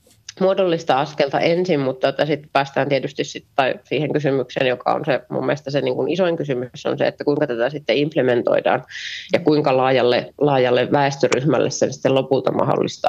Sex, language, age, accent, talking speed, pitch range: female, Finnish, 30-49, native, 160 wpm, 125-155 Hz